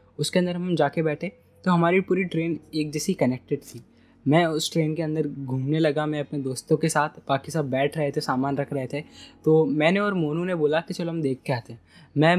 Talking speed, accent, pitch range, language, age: 235 wpm, native, 140-165 Hz, Hindi, 10-29